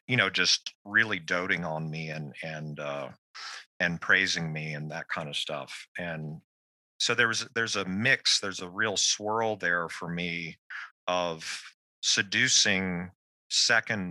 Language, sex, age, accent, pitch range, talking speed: English, male, 40-59, American, 80-95 Hz, 150 wpm